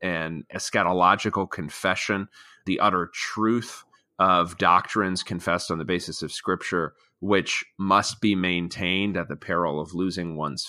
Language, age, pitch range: English, 30-49, 85-110 Hz